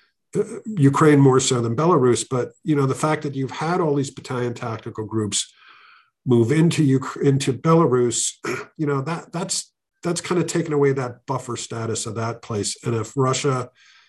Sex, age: male, 50-69